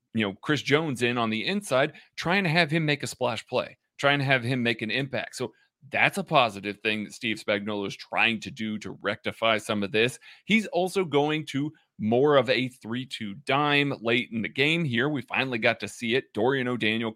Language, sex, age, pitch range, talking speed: English, male, 30-49, 115-165 Hz, 220 wpm